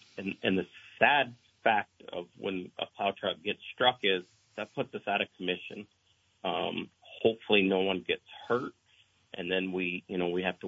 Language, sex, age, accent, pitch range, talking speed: English, male, 40-59, American, 95-115 Hz, 185 wpm